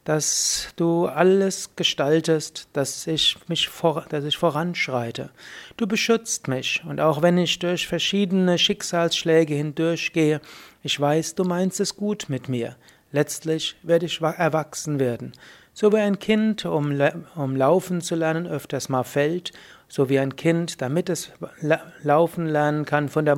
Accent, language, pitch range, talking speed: German, German, 145-170 Hz, 140 wpm